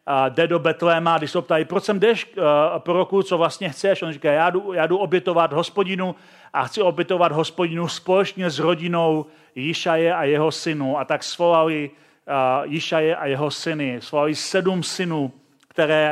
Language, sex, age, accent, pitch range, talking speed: Czech, male, 40-59, native, 155-200 Hz, 170 wpm